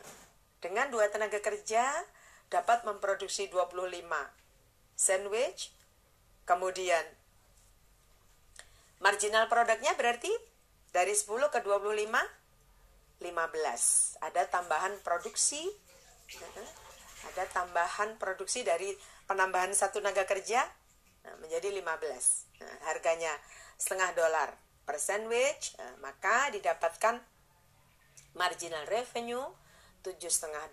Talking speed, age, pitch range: 80 wpm, 40-59, 170-225 Hz